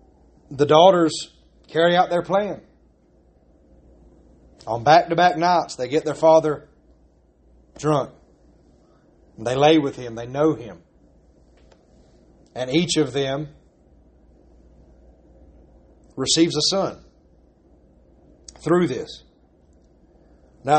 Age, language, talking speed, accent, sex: 30-49, English, 90 wpm, American, male